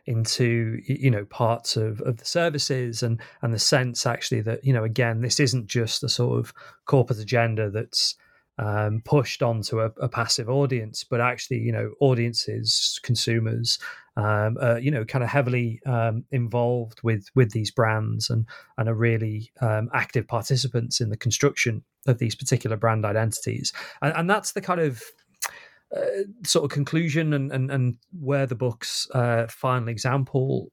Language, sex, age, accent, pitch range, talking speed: English, male, 30-49, British, 115-135 Hz, 170 wpm